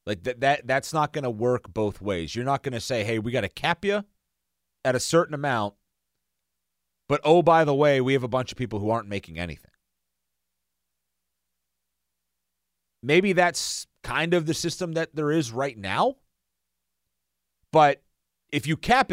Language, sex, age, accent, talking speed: English, male, 40-59, American, 175 wpm